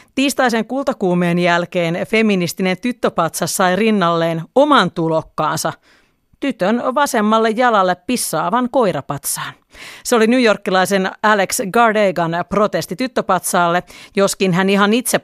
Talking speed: 100 wpm